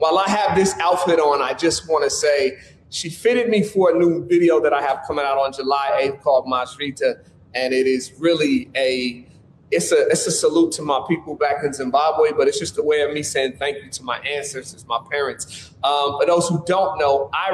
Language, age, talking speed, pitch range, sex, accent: English, 30-49, 225 wpm, 135-190 Hz, male, American